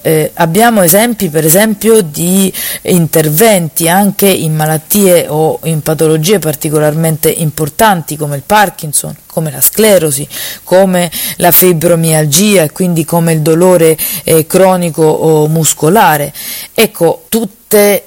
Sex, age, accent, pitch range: female, 40-59, native, 155-195 Hz